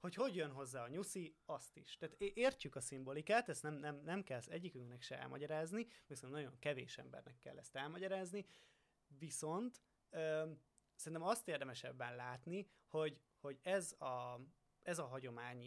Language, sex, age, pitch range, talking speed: Hungarian, male, 20-39, 130-165 Hz, 155 wpm